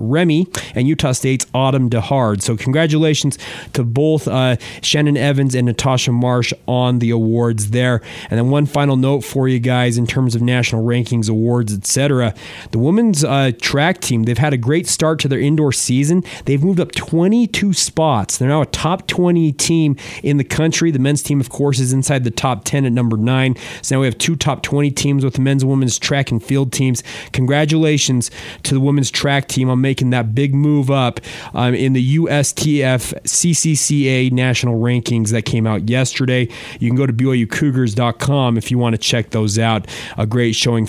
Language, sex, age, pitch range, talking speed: English, male, 30-49, 125-145 Hz, 195 wpm